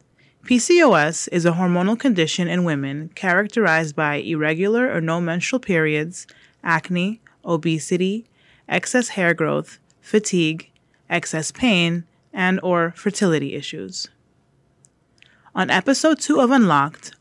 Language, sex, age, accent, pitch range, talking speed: English, female, 30-49, American, 160-205 Hz, 110 wpm